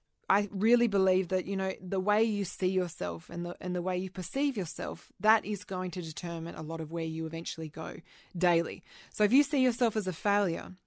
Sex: female